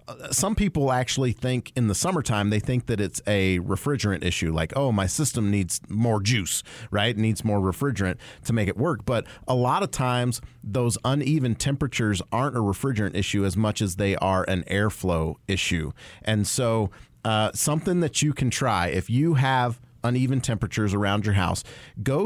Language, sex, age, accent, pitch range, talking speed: English, male, 40-59, American, 105-130 Hz, 180 wpm